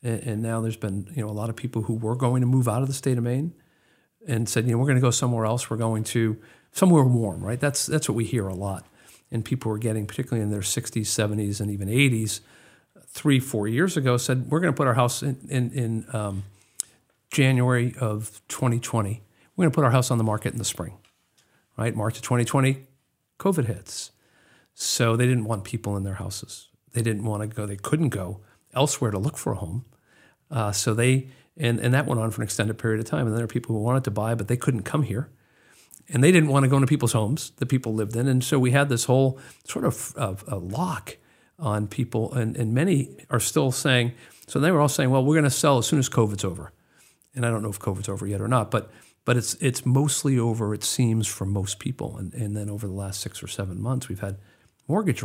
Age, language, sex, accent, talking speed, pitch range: 50-69, English, male, American, 240 wpm, 105-130 Hz